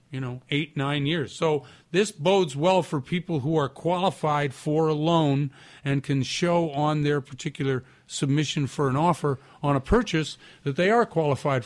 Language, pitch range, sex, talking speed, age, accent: English, 135-175 Hz, male, 175 wpm, 50-69, American